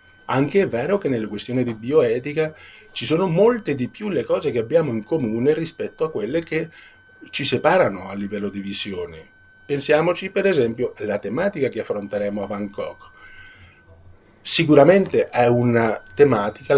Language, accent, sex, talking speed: Italian, native, male, 150 wpm